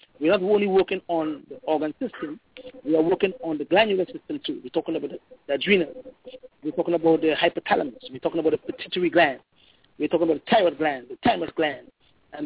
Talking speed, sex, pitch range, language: 205 wpm, male, 175-255 Hz, English